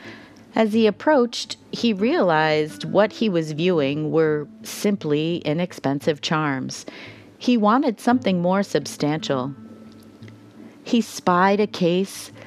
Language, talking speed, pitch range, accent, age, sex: English, 105 wpm, 140-195 Hz, American, 40-59, female